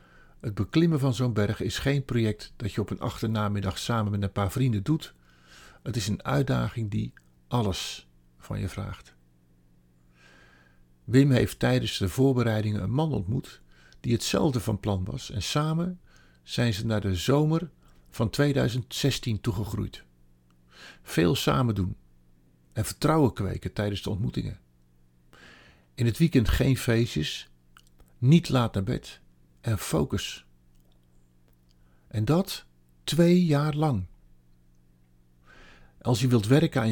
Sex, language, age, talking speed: male, Dutch, 50-69, 130 wpm